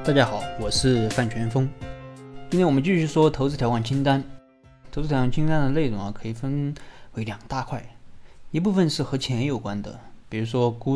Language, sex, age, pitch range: Chinese, male, 20-39, 110-140 Hz